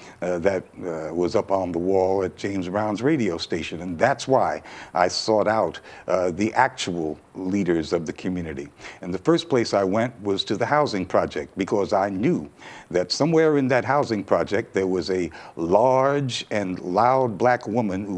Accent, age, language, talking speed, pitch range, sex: American, 60-79, English, 180 wpm, 95-115 Hz, male